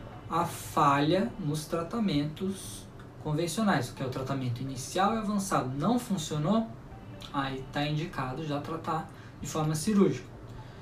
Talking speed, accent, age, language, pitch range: 120 wpm, Brazilian, 10-29, Portuguese, 140-185 Hz